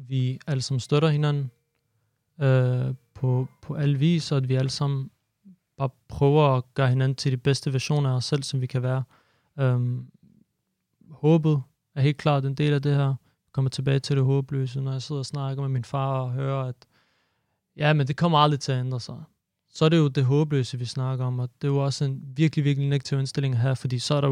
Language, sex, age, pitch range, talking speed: Danish, male, 30-49, 130-145 Hz, 225 wpm